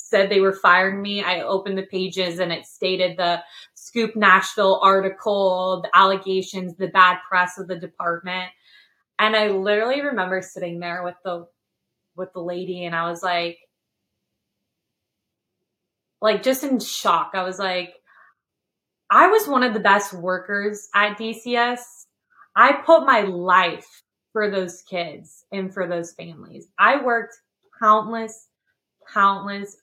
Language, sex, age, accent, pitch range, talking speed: English, female, 20-39, American, 185-225 Hz, 140 wpm